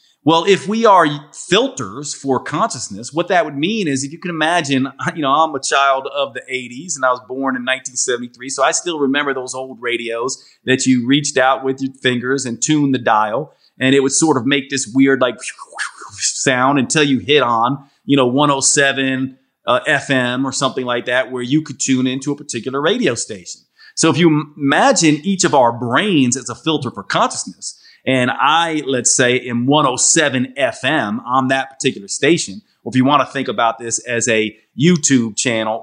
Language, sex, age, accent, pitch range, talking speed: English, male, 30-49, American, 125-150 Hz, 195 wpm